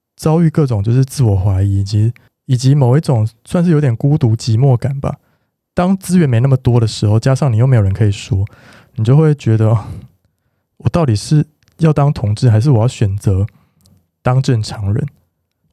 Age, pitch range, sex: 20-39, 110-140 Hz, male